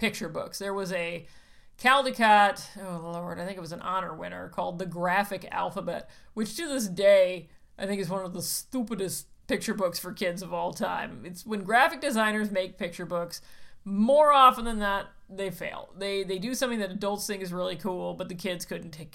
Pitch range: 180-230 Hz